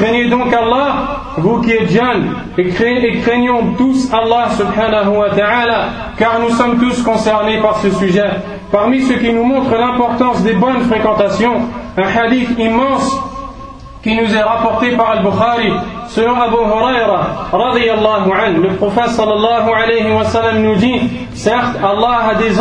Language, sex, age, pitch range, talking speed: French, male, 30-49, 210-240 Hz, 145 wpm